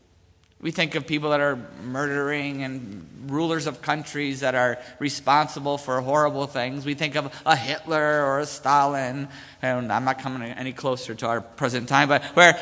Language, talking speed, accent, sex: English, 175 wpm, American, male